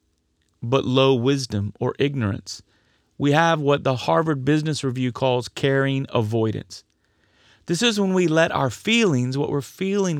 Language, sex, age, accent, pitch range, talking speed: English, male, 30-49, American, 115-150 Hz, 145 wpm